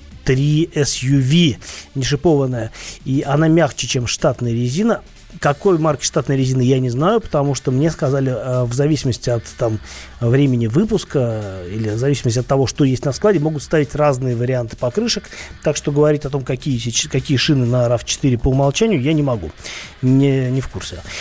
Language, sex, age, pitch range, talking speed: Russian, male, 30-49, 125-155 Hz, 165 wpm